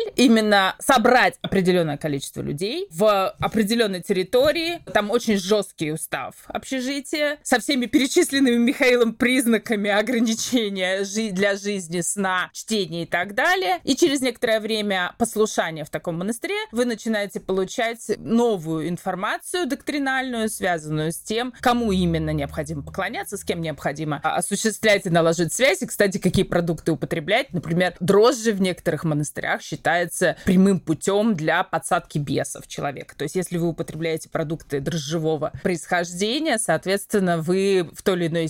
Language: Russian